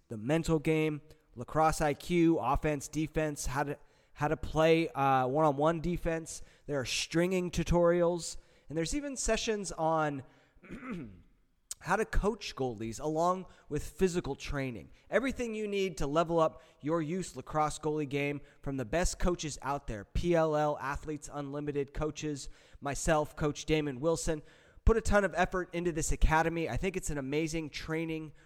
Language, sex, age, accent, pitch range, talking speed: English, male, 20-39, American, 145-170 Hz, 150 wpm